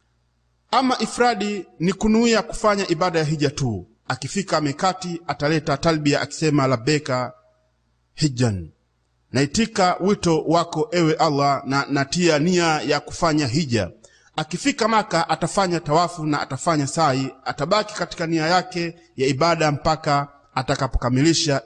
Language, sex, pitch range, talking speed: Swahili, male, 120-165 Hz, 115 wpm